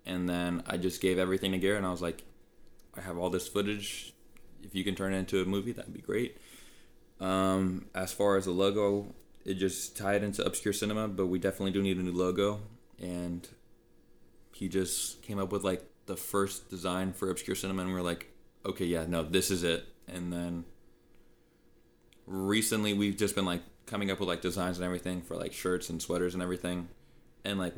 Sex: male